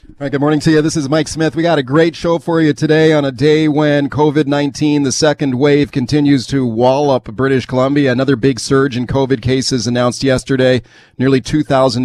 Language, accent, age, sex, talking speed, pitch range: English, American, 40-59, male, 210 wpm, 130-155 Hz